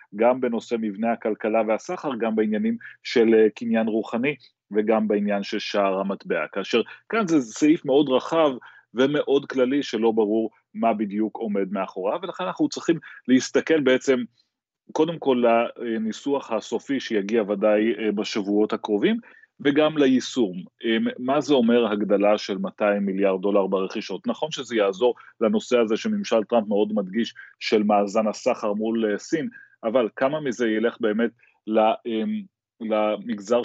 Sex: male